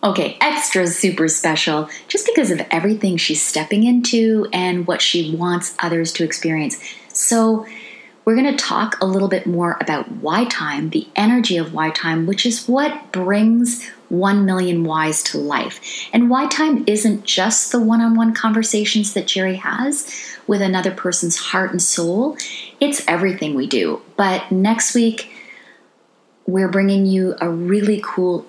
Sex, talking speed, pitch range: female, 155 wpm, 175-230 Hz